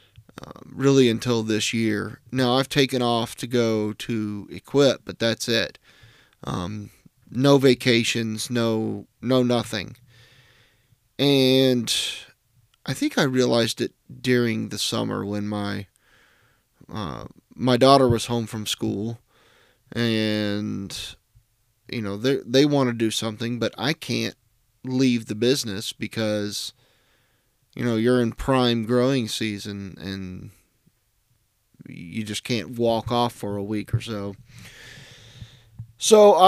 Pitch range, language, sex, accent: 110-130 Hz, English, male, American